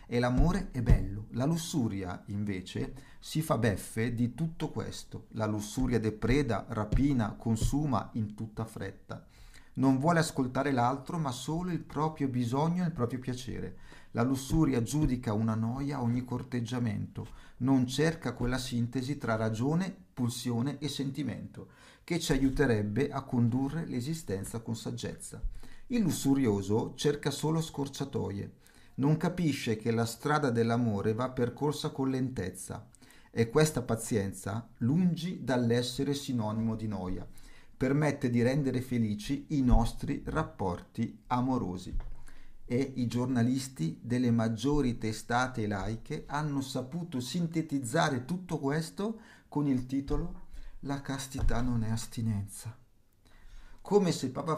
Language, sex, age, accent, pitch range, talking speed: Italian, male, 40-59, native, 115-145 Hz, 125 wpm